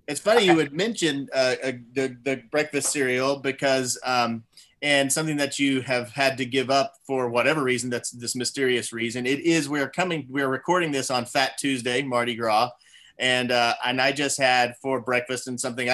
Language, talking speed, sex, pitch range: English, 190 wpm, male, 120-145 Hz